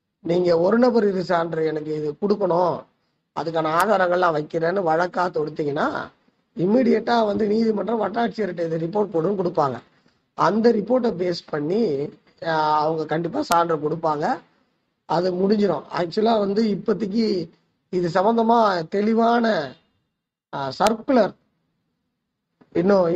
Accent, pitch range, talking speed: native, 160-210 Hz, 95 wpm